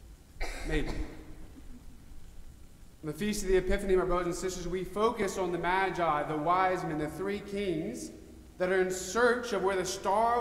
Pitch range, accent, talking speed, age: 150-200 Hz, American, 175 wpm, 30-49